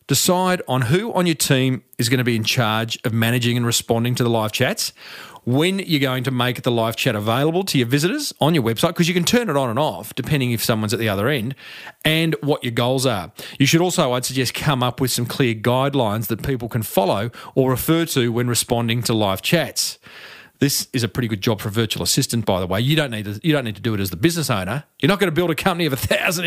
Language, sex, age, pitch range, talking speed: English, male, 40-59, 120-165 Hz, 250 wpm